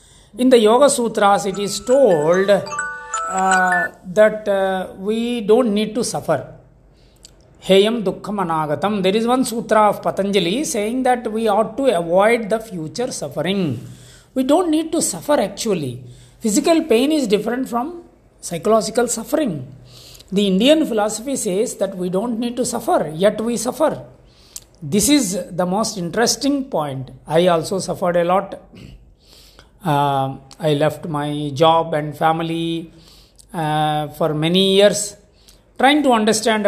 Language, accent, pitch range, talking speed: English, Indian, 165-225 Hz, 135 wpm